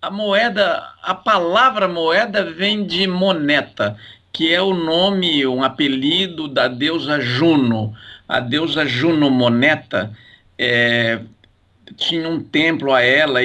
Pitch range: 120-150 Hz